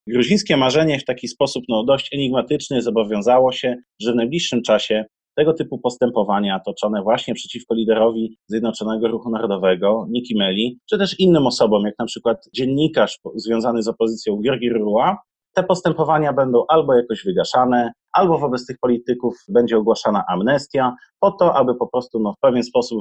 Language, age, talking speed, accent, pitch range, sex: Polish, 30-49, 155 wpm, native, 110-135 Hz, male